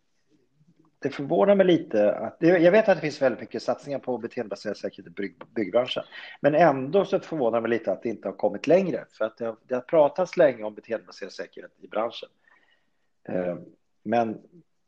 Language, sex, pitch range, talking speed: Swedish, male, 110-145 Hz, 175 wpm